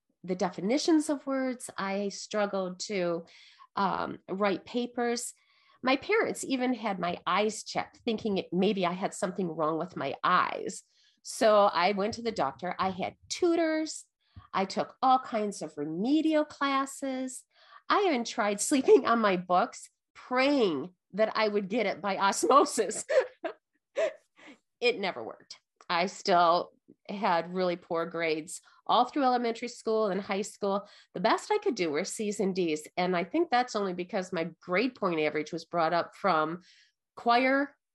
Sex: female